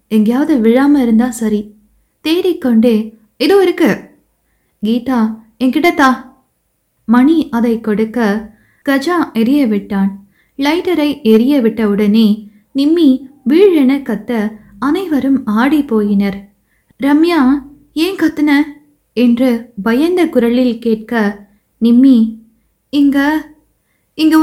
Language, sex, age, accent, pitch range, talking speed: Tamil, female, 20-39, native, 220-290 Hz, 90 wpm